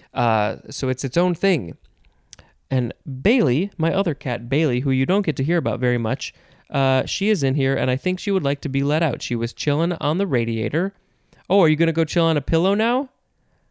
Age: 20-39